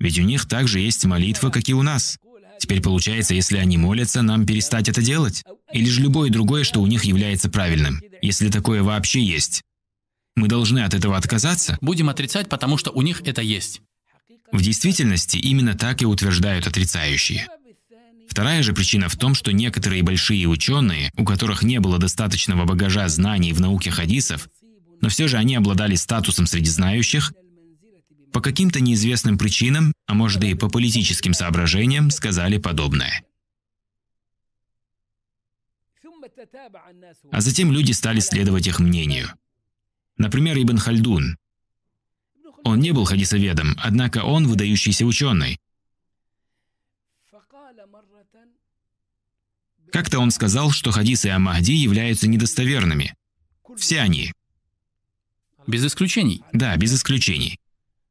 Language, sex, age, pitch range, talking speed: Russian, male, 20-39, 95-130 Hz, 130 wpm